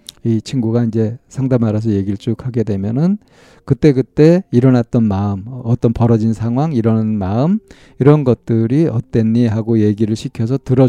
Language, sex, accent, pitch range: Korean, male, native, 105-140 Hz